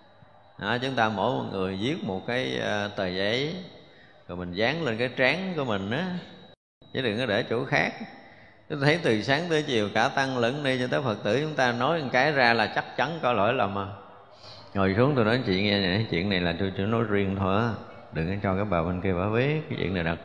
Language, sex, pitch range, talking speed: Vietnamese, male, 100-130 Hz, 245 wpm